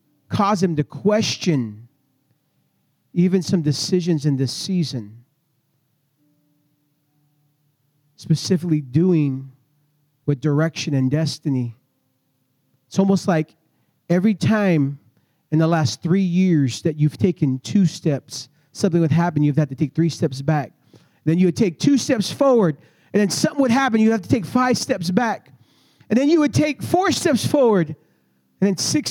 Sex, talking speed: male, 150 wpm